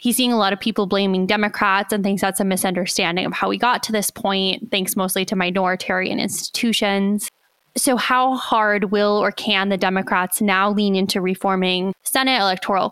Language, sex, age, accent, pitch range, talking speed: English, female, 20-39, American, 195-230 Hz, 180 wpm